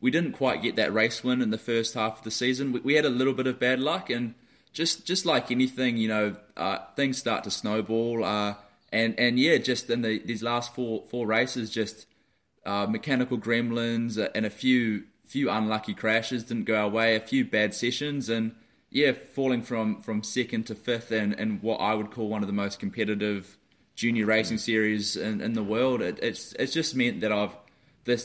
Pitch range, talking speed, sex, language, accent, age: 105-125 Hz, 210 wpm, male, English, Australian, 20-39